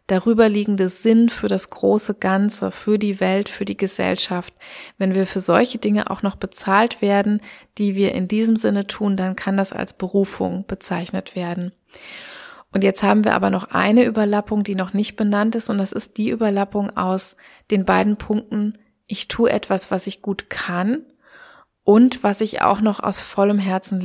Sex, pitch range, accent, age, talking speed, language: female, 190-215 Hz, German, 20-39, 180 wpm, German